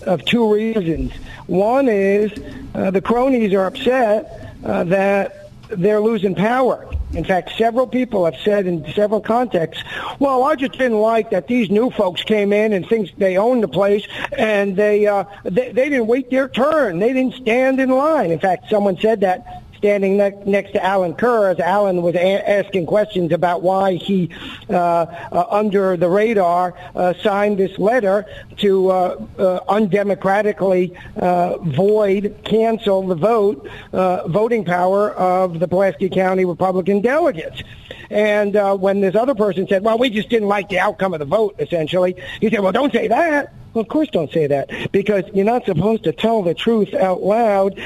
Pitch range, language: 185-225 Hz, English